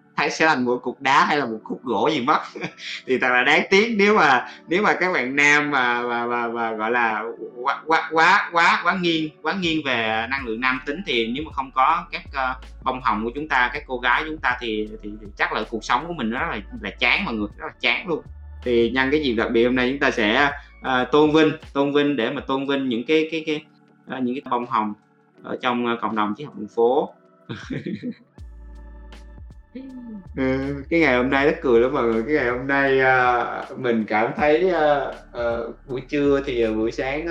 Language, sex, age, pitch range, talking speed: Vietnamese, male, 20-39, 115-150 Hz, 230 wpm